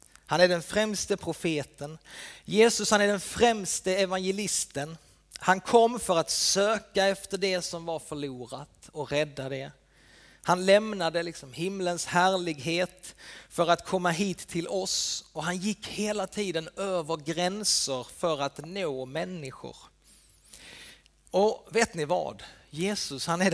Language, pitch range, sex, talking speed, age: Swedish, 155-195 Hz, male, 135 wpm, 30-49